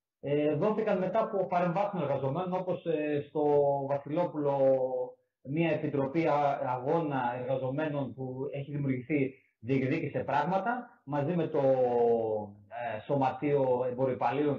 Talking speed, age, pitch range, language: 90 wpm, 30-49, 140-195 Hz, Greek